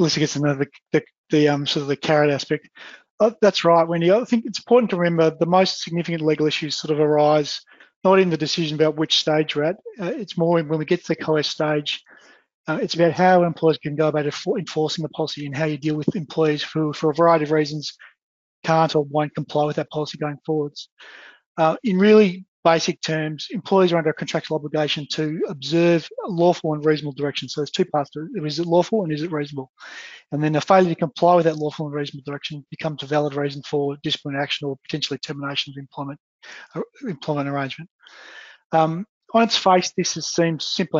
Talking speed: 210 wpm